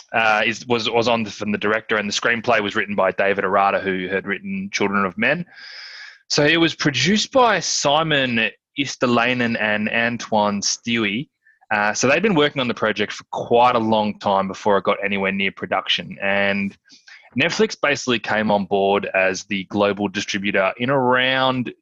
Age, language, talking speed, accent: 20-39, English, 175 wpm, Australian